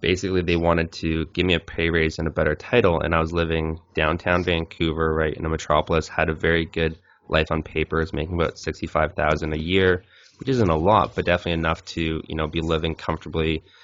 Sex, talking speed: male, 210 wpm